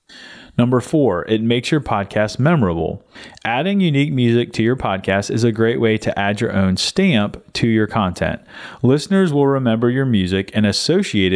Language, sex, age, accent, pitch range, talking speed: English, male, 30-49, American, 100-135 Hz, 170 wpm